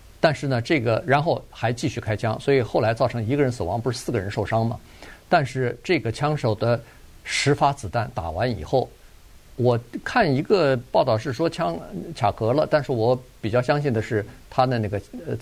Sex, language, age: male, Chinese, 50-69